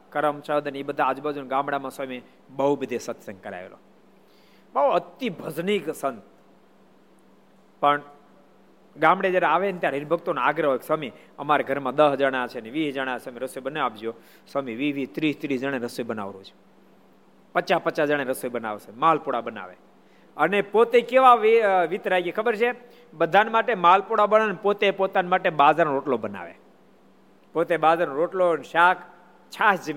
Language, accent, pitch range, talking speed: Gujarati, native, 135-190 Hz, 75 wpm